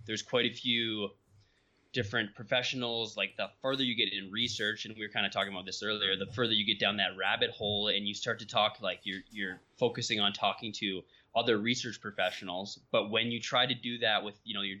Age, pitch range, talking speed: 20-39, 100-120 Hz, 225 wpm